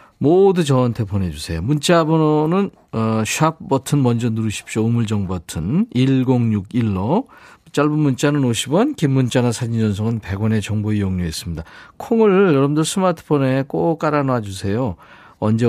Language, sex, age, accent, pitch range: Korean, male, 40-59, native, 105-150 Hz